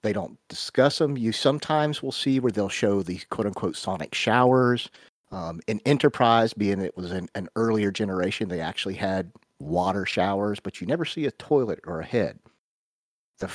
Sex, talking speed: male, 175 wpm